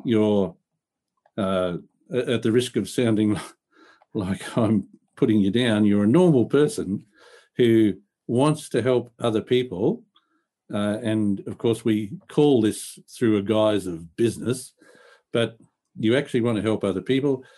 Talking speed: 145 wpm